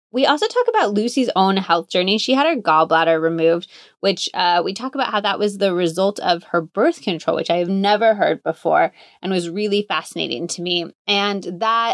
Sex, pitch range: female, 185-240 Hz